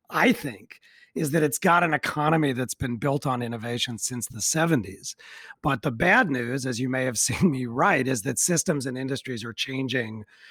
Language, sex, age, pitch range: English, male, 40-59, 120-155 Hz